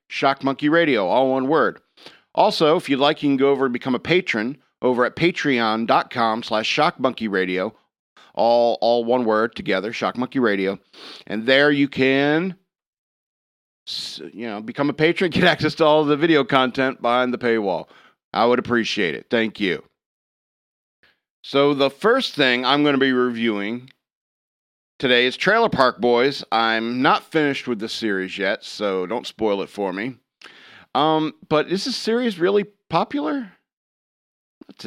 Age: 50-69